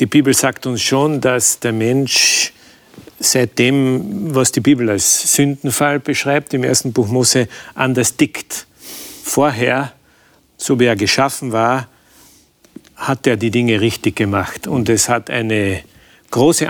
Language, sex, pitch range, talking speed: German, male, 120-145 Hz, 140 wpm